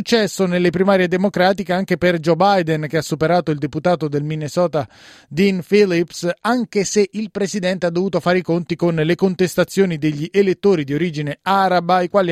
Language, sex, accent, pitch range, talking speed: Italian, male, native, 155-185 Hz, 175 wpm